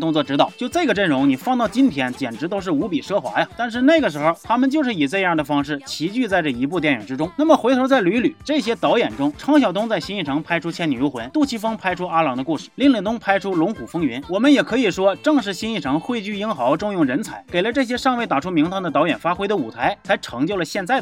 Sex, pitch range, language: male, 180-270 Hz, Chinese